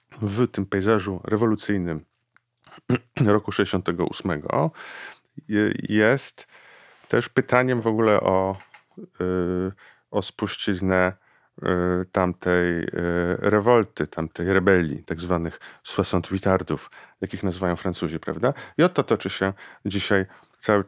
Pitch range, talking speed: 90-105 Hz, 90 wpm